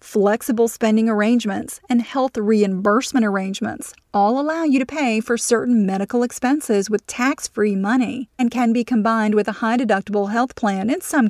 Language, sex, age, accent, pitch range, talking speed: English, female, 40-59, American, 205-245 Hz, 160 wpm